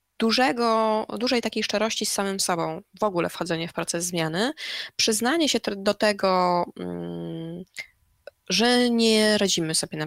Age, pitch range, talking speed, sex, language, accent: 20-39, 180-230 Hz, 125 wpm, female, Polish, native